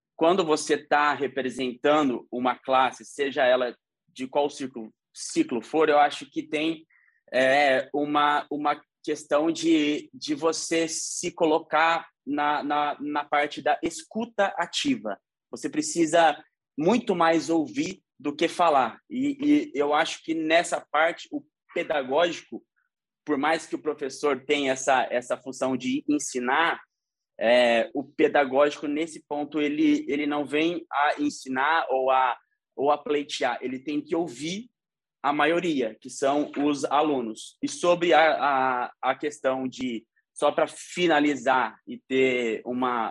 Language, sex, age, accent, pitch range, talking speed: Portuguese, male, 20-39, Brazilian, 130-175 Hz, 130 wpm